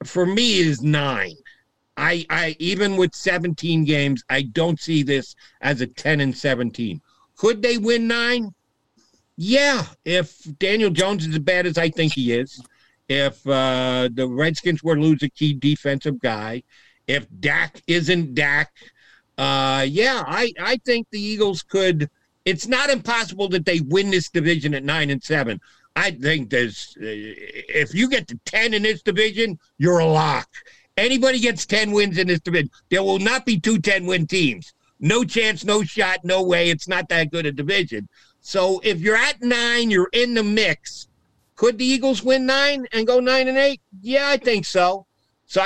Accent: American